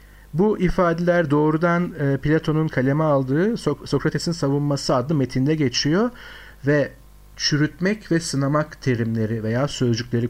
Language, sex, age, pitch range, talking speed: Turkish, male, 50-69, 135-175 Hz, 105 wpm